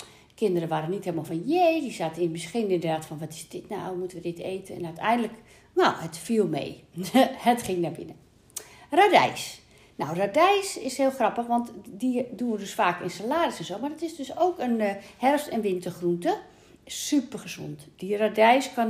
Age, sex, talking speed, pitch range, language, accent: 60-79, female, 190 wpm, 170-235 Hz, Dutch, Dutch